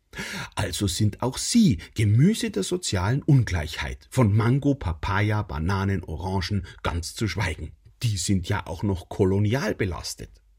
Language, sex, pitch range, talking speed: German, male, 95-140 Hz, 130 wpm